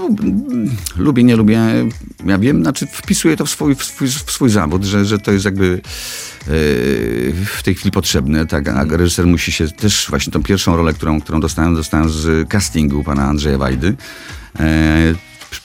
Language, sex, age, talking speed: Polish, male, 40-59, 175 wpm